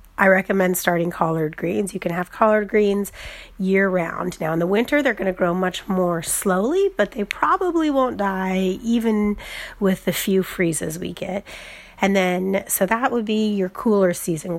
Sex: female